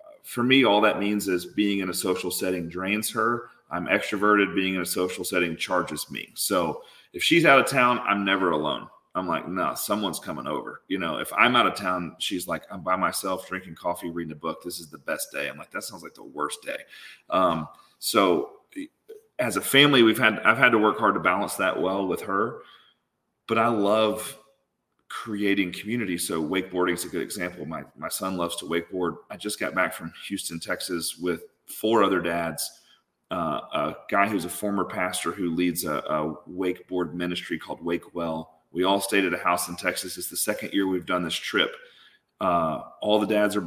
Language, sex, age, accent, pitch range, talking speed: English, male, 30-49, American, 90-105 Hz, 205 wpm